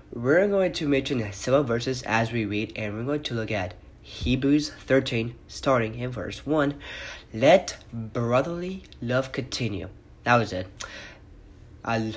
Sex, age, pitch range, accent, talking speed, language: male, 30-49, 105-135 Hz, American, 145 wpm, English